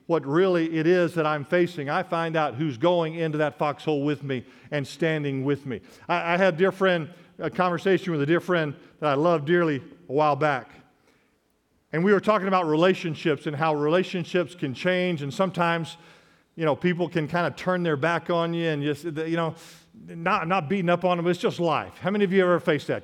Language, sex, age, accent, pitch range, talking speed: English, male, 50-69, American, 155-190 Hz, 225 wpm